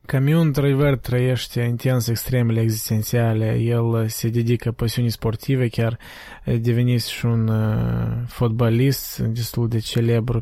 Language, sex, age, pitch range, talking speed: Romanian, male, 20-39, 115-130 Hz, 115 wpm